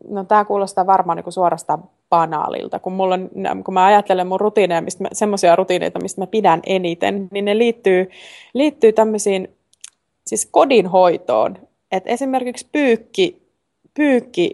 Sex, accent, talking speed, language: female, native, 135 wpm, Finnish